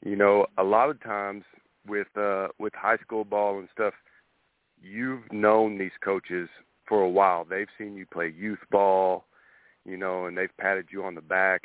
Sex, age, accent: male, 40-59, American